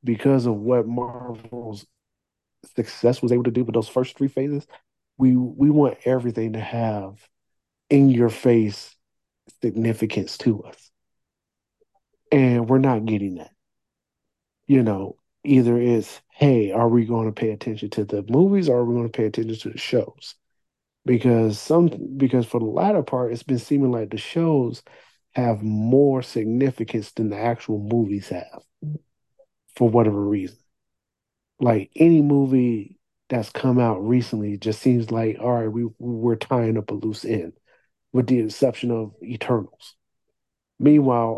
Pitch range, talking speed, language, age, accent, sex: 110-130 Hz, 150 wpm, English, 40-59, American, male